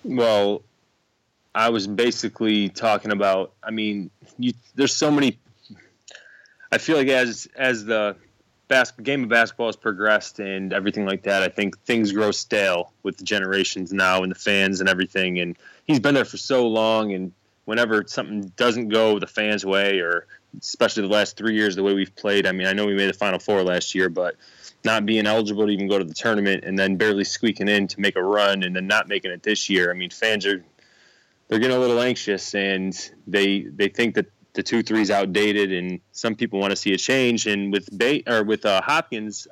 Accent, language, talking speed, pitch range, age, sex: American, English, 205 wpm, 95-115 Hz, 20-39, male